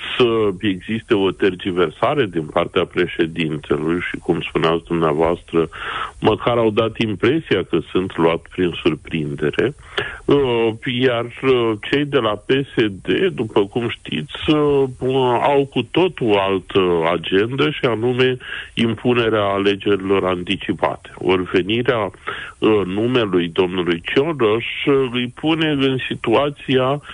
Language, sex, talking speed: Romanian, male, 105 wpm